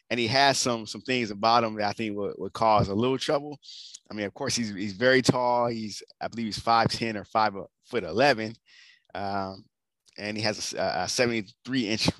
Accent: American